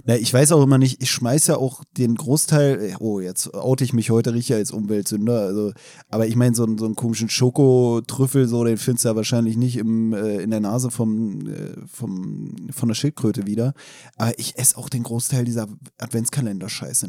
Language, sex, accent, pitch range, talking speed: German, male, German, 110-135 Hz, 200 wpm